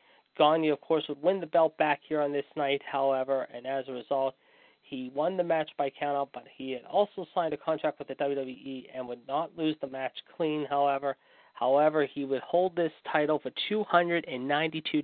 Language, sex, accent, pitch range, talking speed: English, male, American, 135-155 Hz, 195 wpm